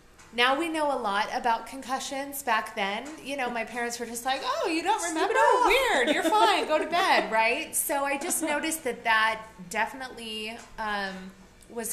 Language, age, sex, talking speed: English, 30-49, female, 185 wpm